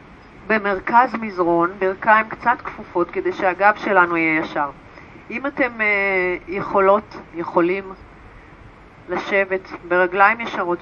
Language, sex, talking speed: Hebrew, female, 100 wpm